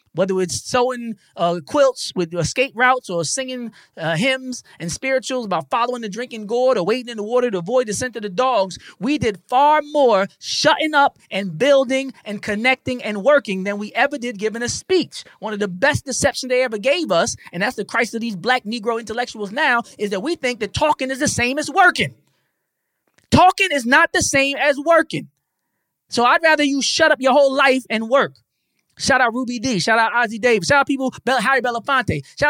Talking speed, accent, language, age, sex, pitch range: 210 wpm, American, English, 20-39, male, 230-285 Hz